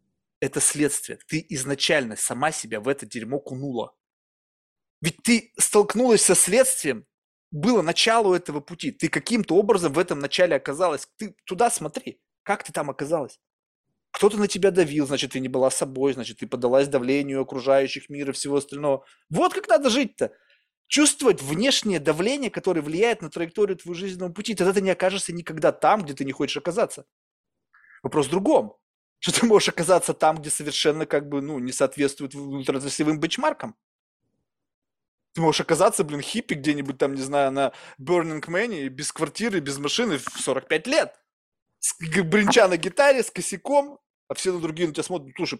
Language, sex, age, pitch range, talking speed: Russian, male, 20-39, 140-200 Hz, 165 wpm